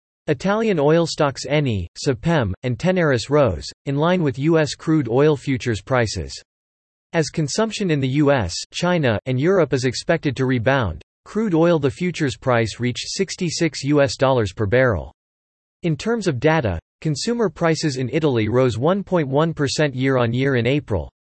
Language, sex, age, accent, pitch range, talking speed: English, male, 40-59, American, 120-160 Hz, 145 wpm